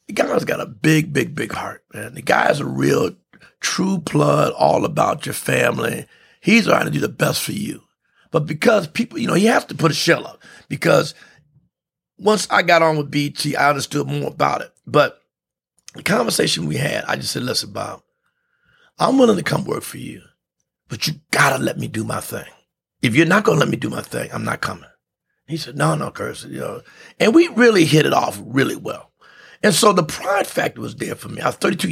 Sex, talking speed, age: male, 215 wpm, 50-69